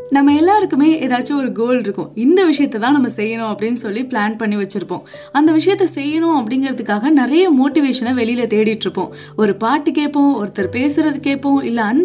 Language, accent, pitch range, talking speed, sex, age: Tamil, native, 220-300 Hz, 160 wpm, female, 20-39